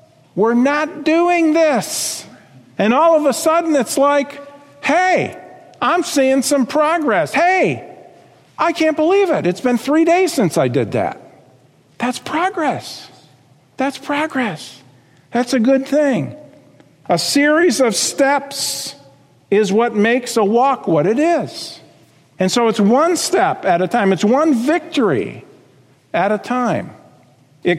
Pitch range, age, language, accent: 200-305 Hz, 50-69, English, American